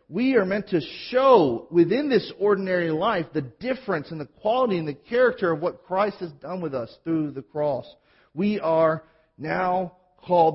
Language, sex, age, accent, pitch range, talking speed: English, male, 40-59, American, 160-205 Hz, 175 wpm